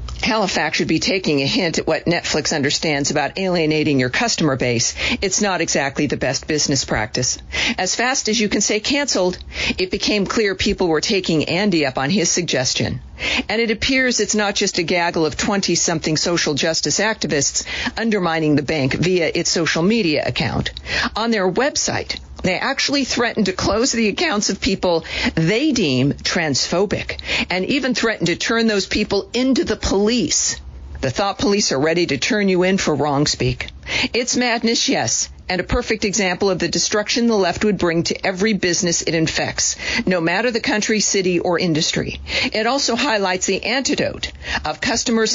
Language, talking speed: English, 175 wpm